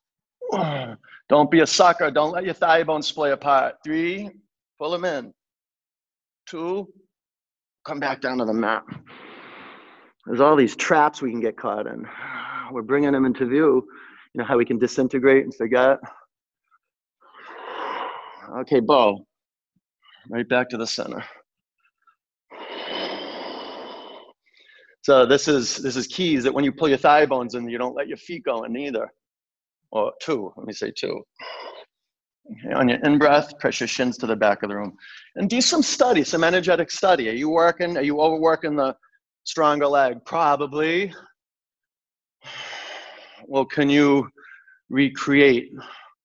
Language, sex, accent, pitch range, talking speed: English, male, American, 130-185 Hz, 145 wpm